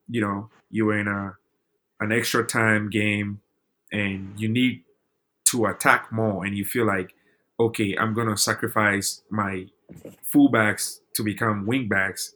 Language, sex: English, male